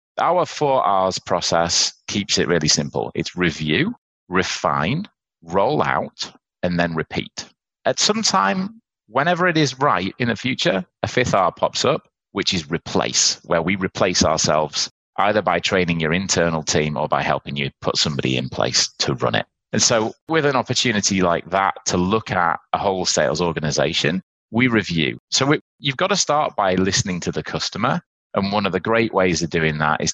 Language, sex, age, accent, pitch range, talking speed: English, male, 30-49, British, 85-115 Hz, 180 wpm